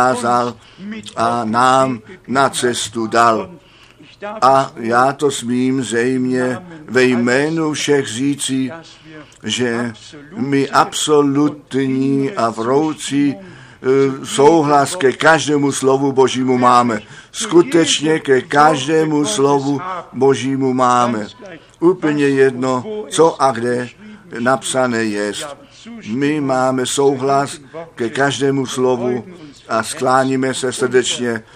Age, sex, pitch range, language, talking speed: 50-69, male, 125-150 Hz, Czech, 90 wpm